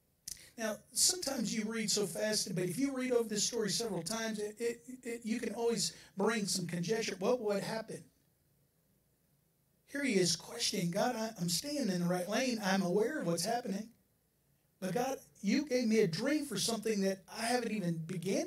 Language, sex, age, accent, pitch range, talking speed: English, male, 50-69, American, 170-225 Hz, 190 wpm